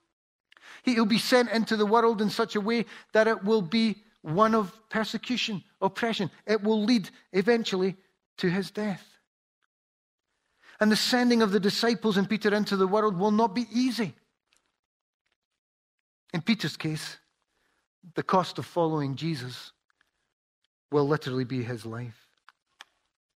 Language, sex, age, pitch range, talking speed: English, male, 40-59, 180-225 Hz, 135 wpm